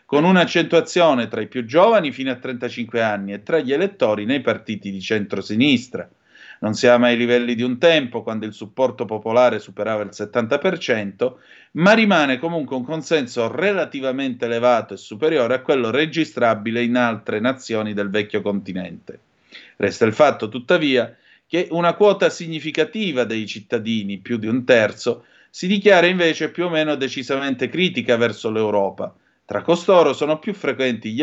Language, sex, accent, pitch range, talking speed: Italian, male, native, 110-170 Hz, 155 wpm